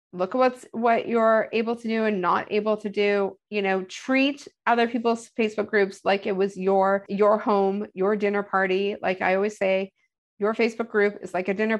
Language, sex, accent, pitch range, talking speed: English, female, American, 195-230 Hz, 205 wpm